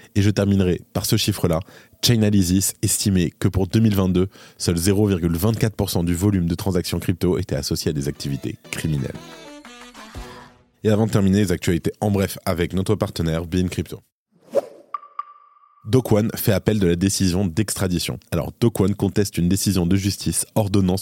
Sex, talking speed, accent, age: male, 150 wpm, French, 20-39